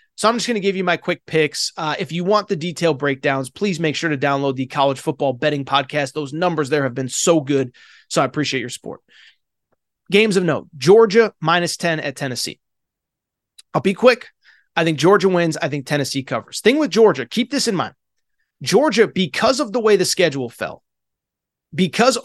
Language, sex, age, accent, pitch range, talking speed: English, male, 30-49, American, 150-205 Hz, 200 wpm